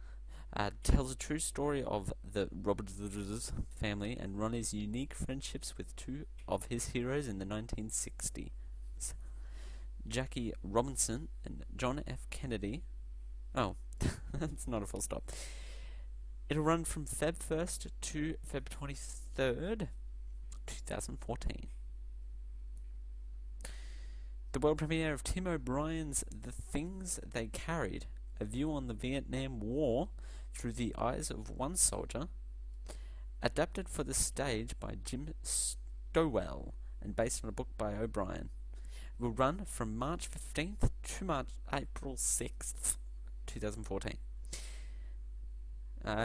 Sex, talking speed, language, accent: male, 115 wpm, English, Australian